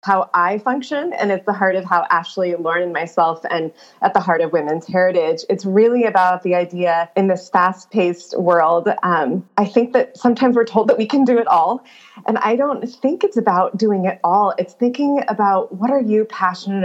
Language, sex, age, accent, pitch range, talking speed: English, female, 20-39, American, 175-215 Hz, 205 wpm